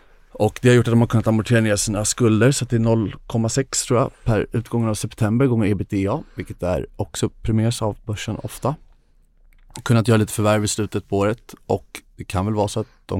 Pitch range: 90-110 Hz